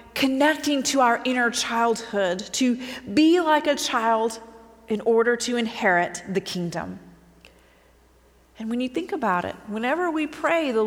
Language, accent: English, American